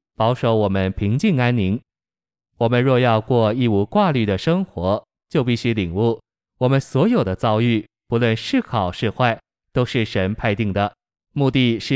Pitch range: 105-125 Hz